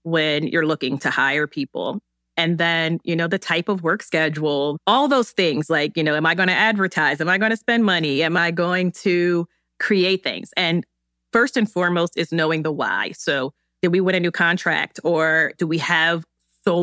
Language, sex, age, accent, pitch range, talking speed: English, female, 30-49, American, 160-190 Hz, 200 wpm